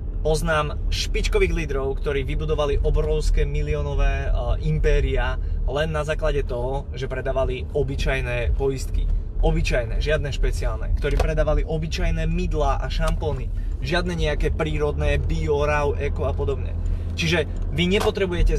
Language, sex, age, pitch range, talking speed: Slovak, male, 20-39, 75-95 Hz, 120 wpm